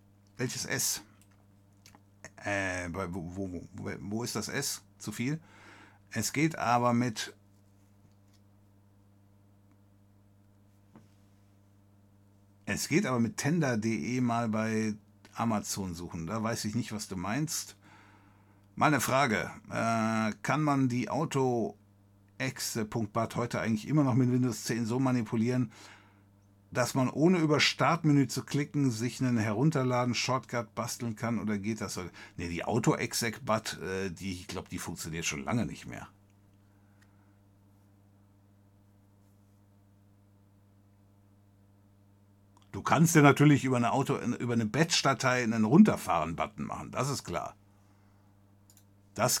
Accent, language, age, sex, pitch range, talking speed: German, French, 60-79, male, 100-120 Hz, 110 wpm